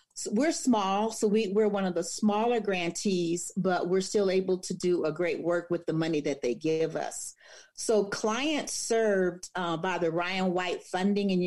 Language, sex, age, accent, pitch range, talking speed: English, female, 40-59, American, 175-215 Hz, 200 wpm